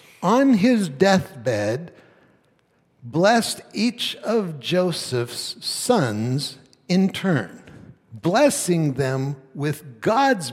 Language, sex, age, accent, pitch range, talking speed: English, male, 60-79, American, 120-175 Hz, 80 wpm